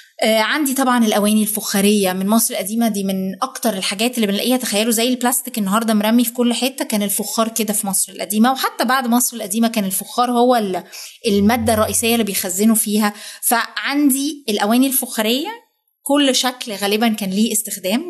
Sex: female